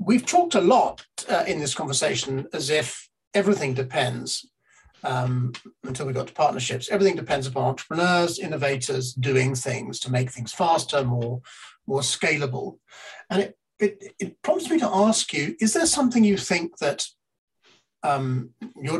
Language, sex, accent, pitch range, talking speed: English, male, British, 125-180 Hz, 150 wpm